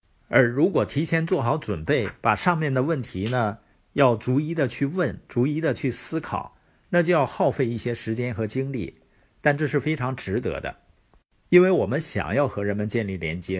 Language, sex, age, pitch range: Chinese, male, 50-69, 95-145 Hz